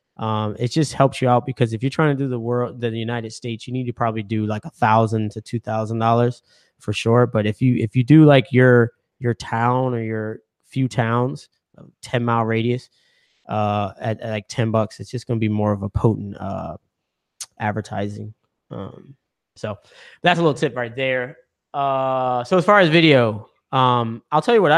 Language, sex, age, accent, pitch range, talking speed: English, male, 20-39, American, 115-140 Hz, 200 wpm